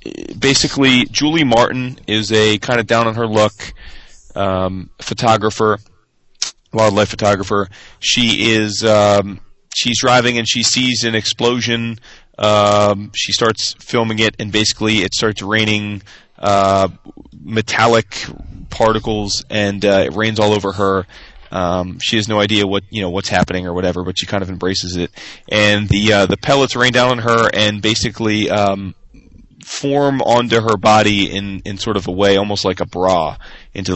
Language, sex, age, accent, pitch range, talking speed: English, male, 30-49, American, 95-110 Hz, 160 wpm